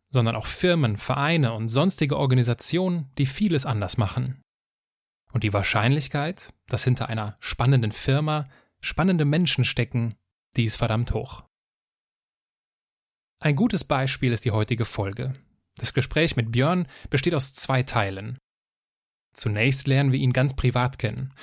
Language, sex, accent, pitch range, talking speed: German, male, German, 115-150 Hz, 130 wpm